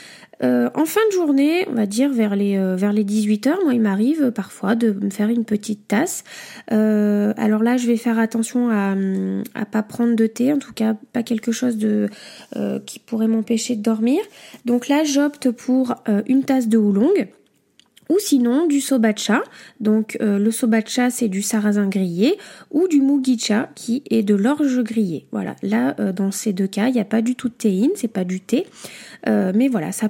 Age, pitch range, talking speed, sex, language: 10-29, 210-260 Hz, 205 wpm, female, French